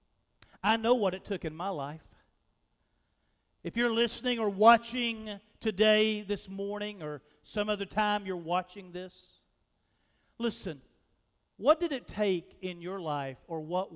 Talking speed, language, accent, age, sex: 140 wpm, English, American, 50-69, male